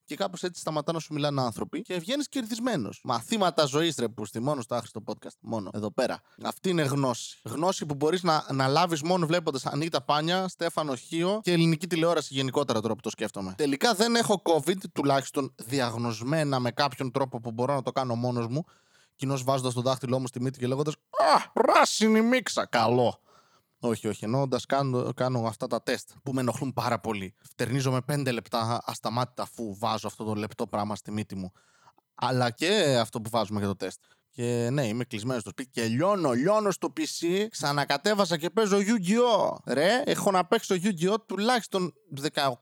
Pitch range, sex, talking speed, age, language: 120-175 Hz, male, 185 wpm, 20-39, Greek